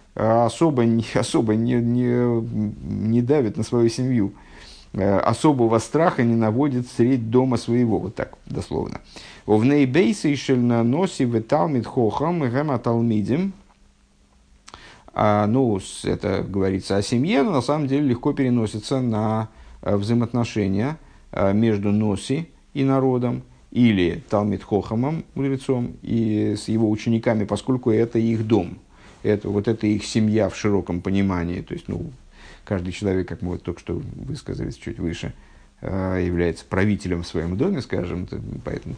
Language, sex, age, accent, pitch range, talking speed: Russian, male, 50-69, native, 95-120 Hz, 130 wpm